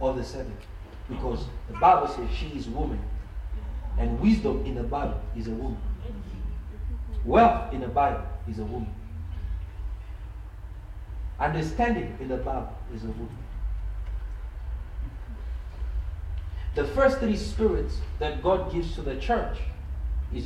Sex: male